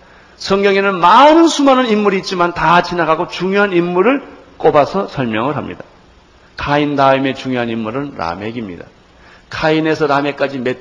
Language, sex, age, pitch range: Korean, male, 60-79, 120-170 Hz